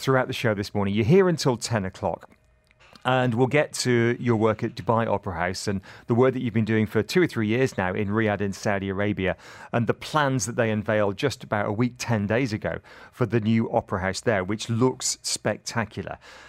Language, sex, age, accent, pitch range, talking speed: English, male, 40-59, British, 100-125 Hz, 220 wpm